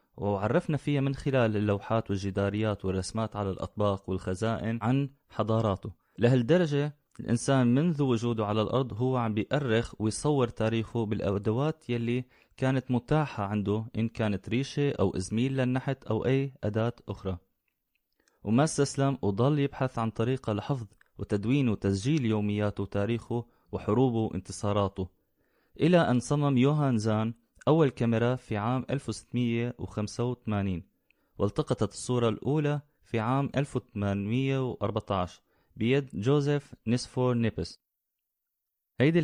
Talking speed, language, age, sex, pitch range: 110 wpm, Arabic, 20-39, male, 105-130 Hz